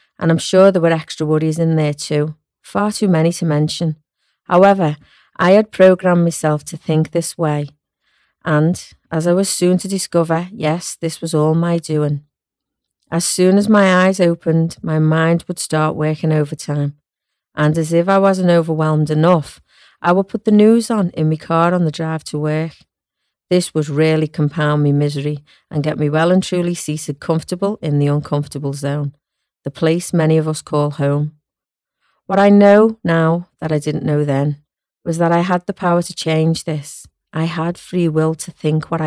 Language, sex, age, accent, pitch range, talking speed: English, female, 40-59, British, 150-175 Hz, 185 wpm